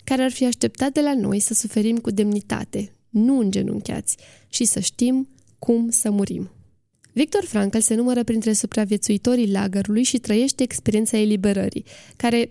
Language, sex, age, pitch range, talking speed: Romanian, female, 20-39, 205-240 Hz, 150 wpm